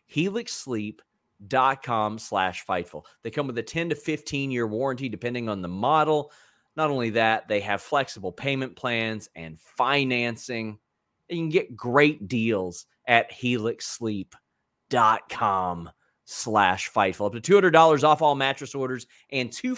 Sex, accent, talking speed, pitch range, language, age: male, American, 140 wpm, 105-145 Hz, English, 30-49